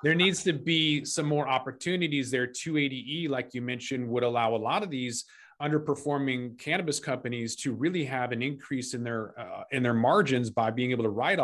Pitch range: 120-145 Hz